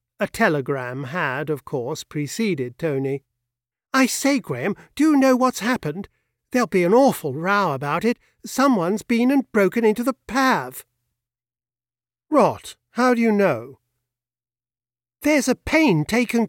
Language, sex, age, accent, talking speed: English, male, 50-69, British, 140 wpm